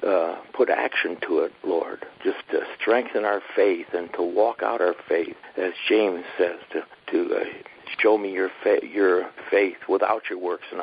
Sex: male